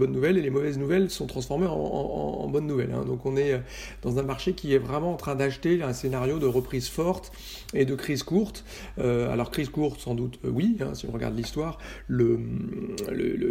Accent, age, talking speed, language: French, 40-59, 220 wpm, French